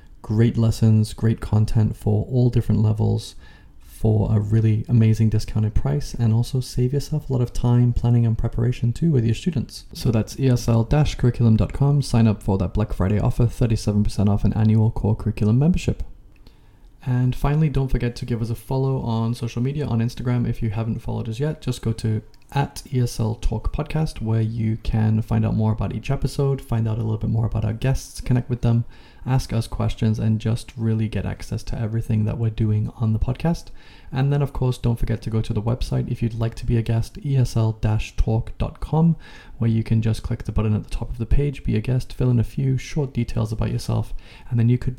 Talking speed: 205 wpm